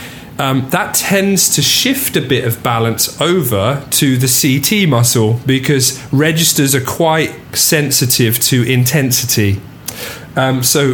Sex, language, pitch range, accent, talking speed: male, English, 120-140 Hz, British, 125 wpm